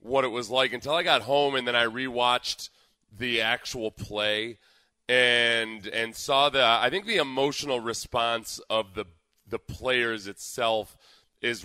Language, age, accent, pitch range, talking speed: English, 30-49, American, 110-135 Hz, 155 wpm